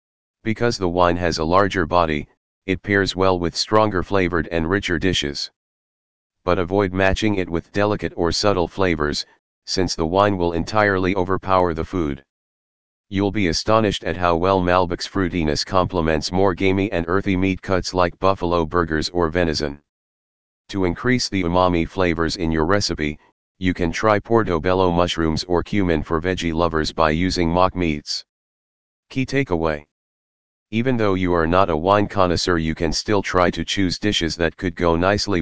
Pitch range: 80-95 Hz